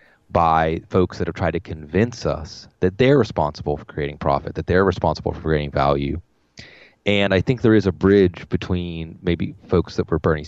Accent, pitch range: American, 80-95 Hz